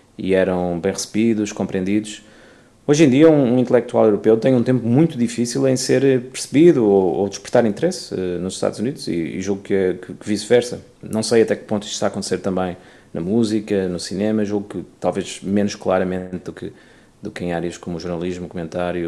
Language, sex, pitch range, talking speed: Portuguese, male, 95-120 Hz, 195 wpm